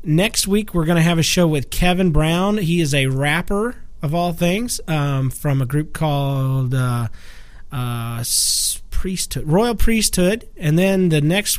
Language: English